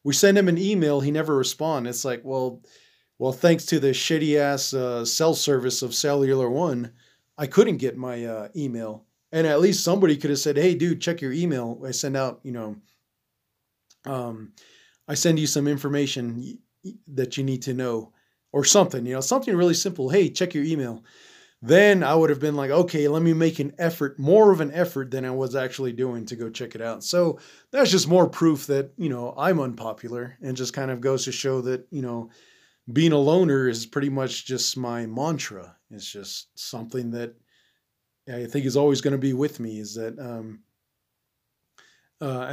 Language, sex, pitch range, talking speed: English, male, 120-160 Hz, 200 wpm